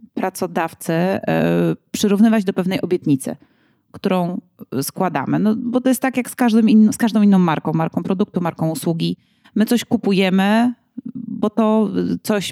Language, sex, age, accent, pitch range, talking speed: Polish, female, 30-49, native, 165-205 Hz, 150 wpm